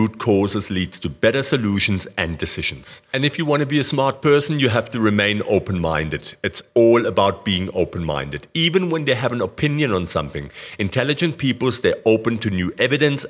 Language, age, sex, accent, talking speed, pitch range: English, 50-69, male, German, 185 wpm, 95-135 Hz